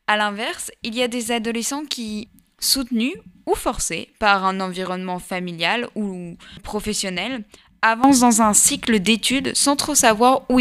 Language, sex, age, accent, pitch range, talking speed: French, female, 20-39, French, 205-260 Hz, 145 wpm